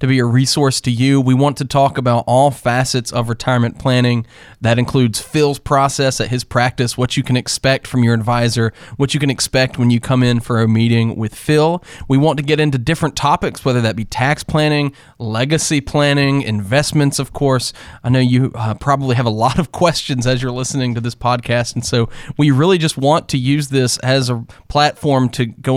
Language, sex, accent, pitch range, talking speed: English, male, American, 120-150 Hz, 210 wpm